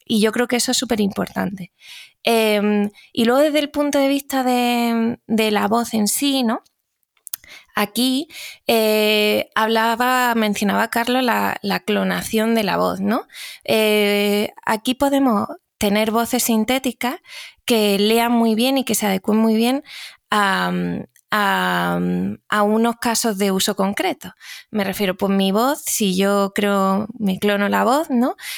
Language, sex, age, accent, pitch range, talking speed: Spanish, female, 20-39, Spanish, 205-245 Hz, 155 wpm